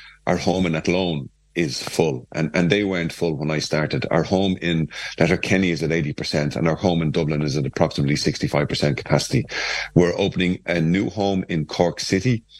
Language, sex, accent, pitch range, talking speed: English, male, Irish, 75-90 Hz, 185 wpm